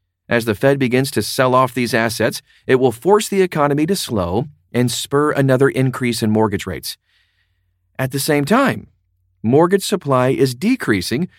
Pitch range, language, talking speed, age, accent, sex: 100-140 Hz, English, 165 wpm, 40-59, American, male